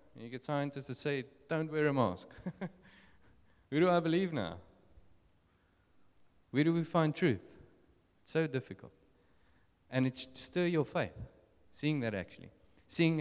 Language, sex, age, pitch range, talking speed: English, male, 30-49, 95-140 Hz, 145 wpm